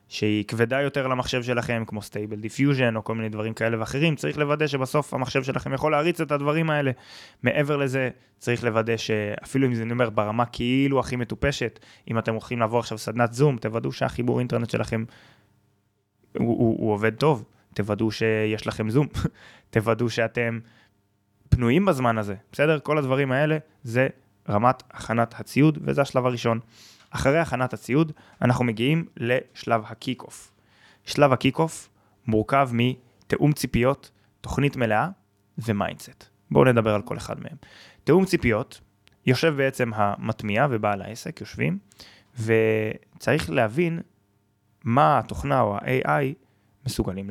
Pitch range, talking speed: 110-135 Hz, 135 wpm